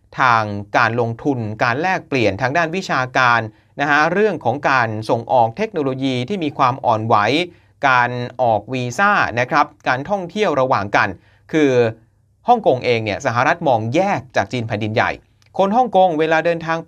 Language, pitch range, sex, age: Thai, 110-165 Hz, male, 30-49